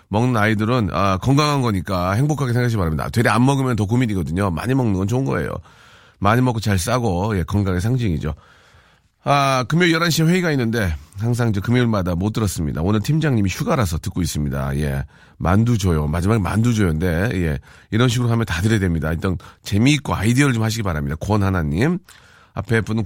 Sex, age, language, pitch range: male, 40-59, Korean, 90-125 Hz